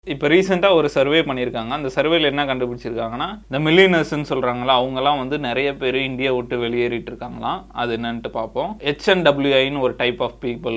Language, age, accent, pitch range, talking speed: Tamil, 20-39, native, 120-145 Hz, 155 wpm